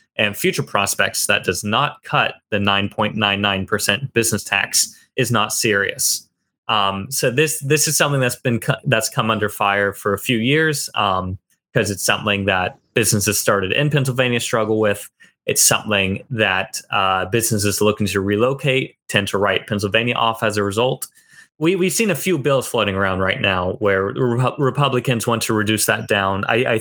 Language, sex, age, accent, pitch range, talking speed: English, male, 20-39, American, 100-125 Hz, 185 wpm